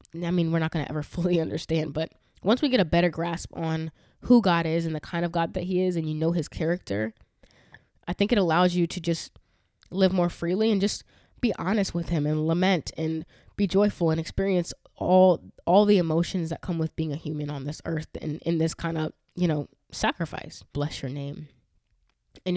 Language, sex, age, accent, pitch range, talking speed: English, female, 20-39, American, 150-175 Hz, 215 wpm